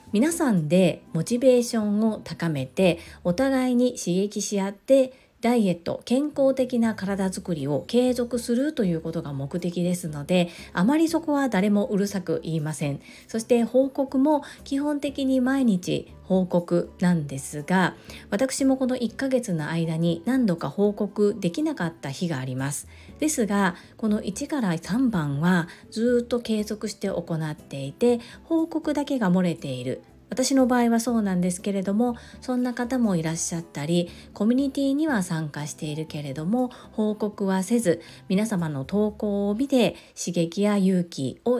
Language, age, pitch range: Japanese, 40-59, 170-245 Hz